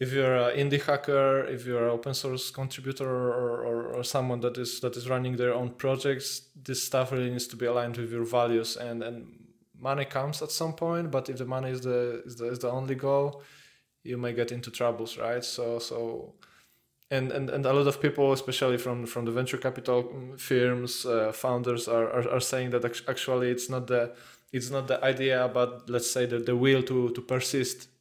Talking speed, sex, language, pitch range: 210 wpm, male, Polish, 120-130 Hz